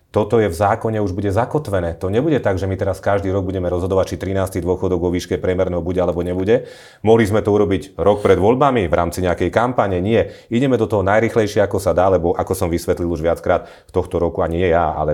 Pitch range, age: 90-110 Hz, 30-49